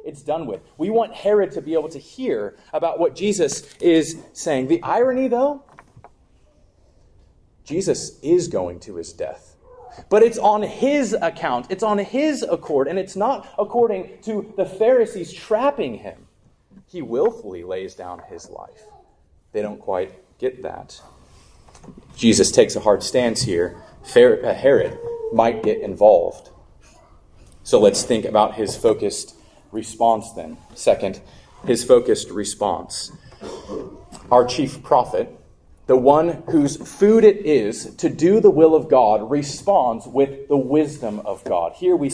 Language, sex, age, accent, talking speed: English, male, 30-49, American, 140 wpm